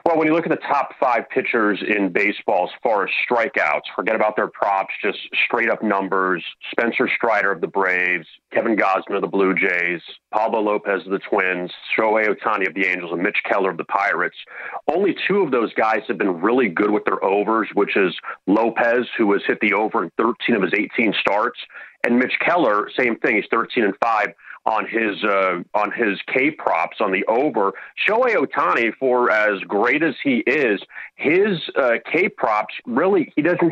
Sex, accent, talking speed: male, American, 190 wpm